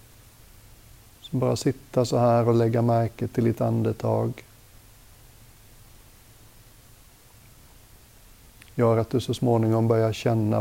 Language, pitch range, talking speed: Swedish, 110-115 Hz, 95 wpm